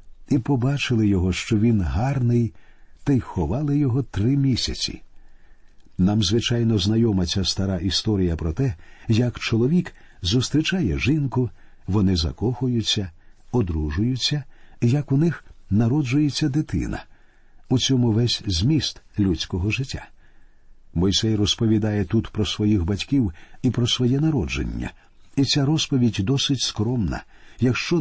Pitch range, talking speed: 95-130 Hz, 115 wpm